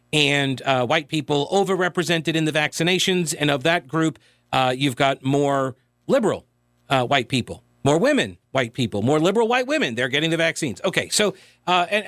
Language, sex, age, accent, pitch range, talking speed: English, male, 40-59, American, 140-200 Hz, 180 wpm